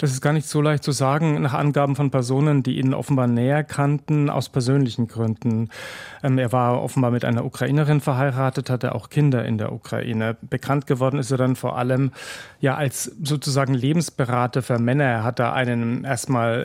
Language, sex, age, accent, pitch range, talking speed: German, male, 40-59, German, 120-140 Hz, 185 wpm